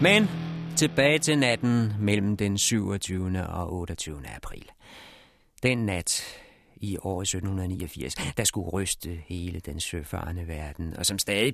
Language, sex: Danish, male